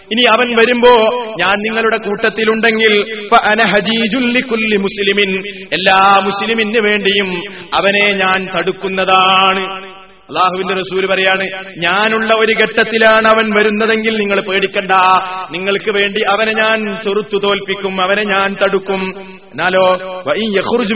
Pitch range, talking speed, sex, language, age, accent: 190-220 Hz, 95 wpm, male, Malayalam, 30-49, native